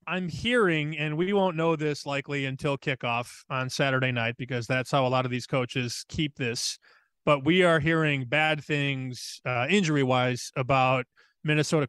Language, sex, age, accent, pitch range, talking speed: English, male, 30-49, American, 130-155 Hz, 165 wpm